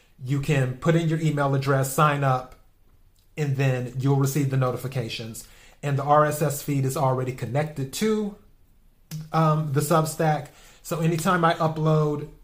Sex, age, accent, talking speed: male, 30-49, American, 145 wpm